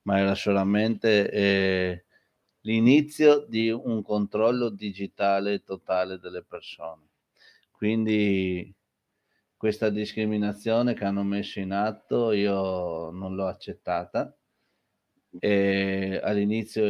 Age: 30-49